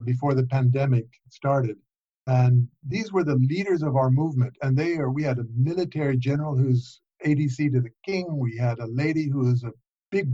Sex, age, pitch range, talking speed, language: male, 50-69, 130-165 Hz, 190 wpm, English